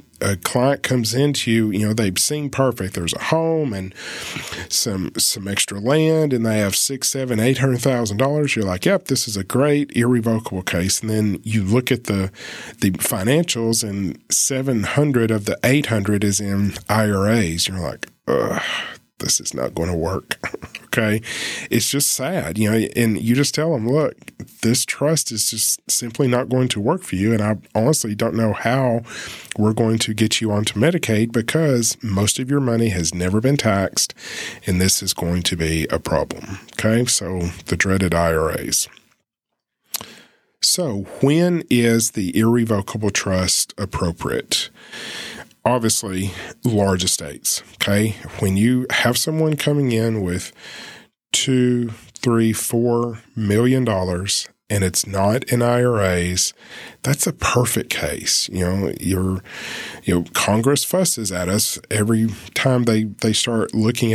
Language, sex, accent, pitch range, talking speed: English, male, American, 100-125 Hz, 155 wpm